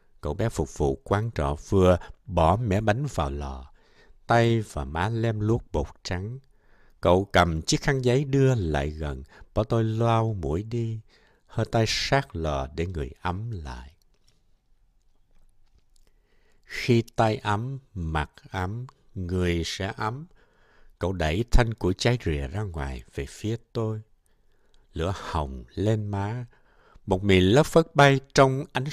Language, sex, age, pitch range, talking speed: Vietnamese, male, 60-79, 85-120 Hz, 145 wpm